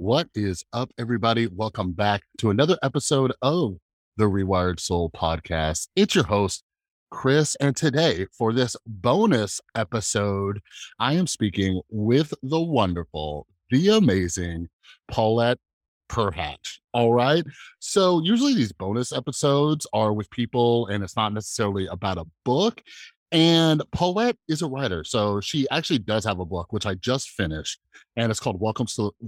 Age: 30-49